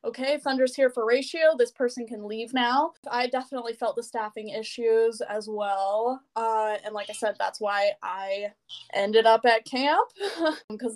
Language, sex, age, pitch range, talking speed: English, female, 10-29, 215-270 Hz, 170 wpm